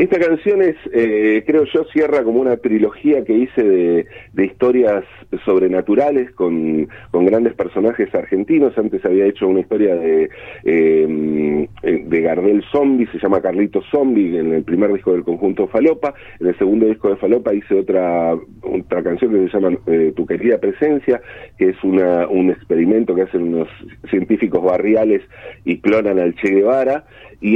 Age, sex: 40-59, male